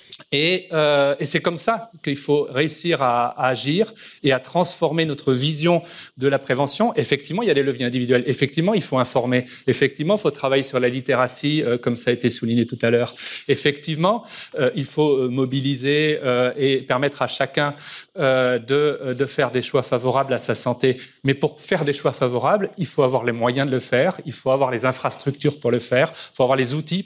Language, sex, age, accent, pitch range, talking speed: French, male, 30-49, French, 130-155 Hz, 210 wpm